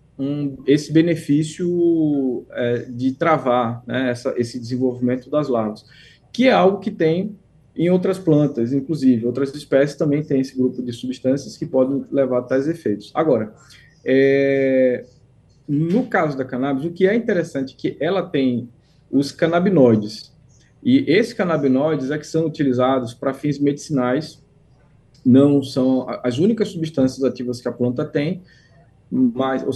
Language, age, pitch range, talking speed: Portuguese, 20-39, 130-160 Hz, 145 wpm